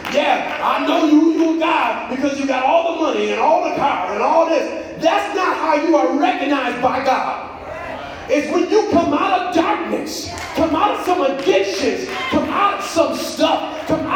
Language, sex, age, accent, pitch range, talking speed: English, male, 30-49, American, 255-325 Hz, 190 wpm